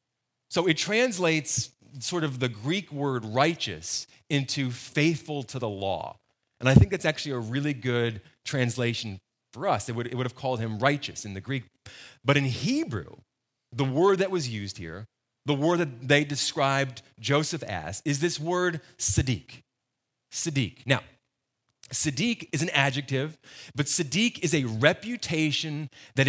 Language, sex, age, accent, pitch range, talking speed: English, male, 30-49, American, 120-160 Hz, 155 wpm